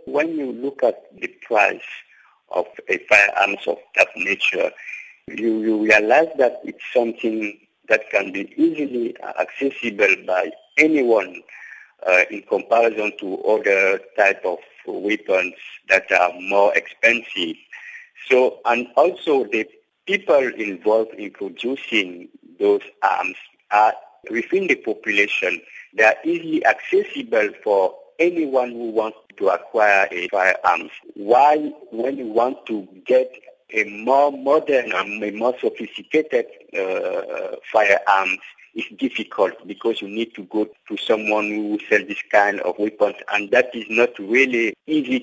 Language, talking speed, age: English, 130 wpm, 50-69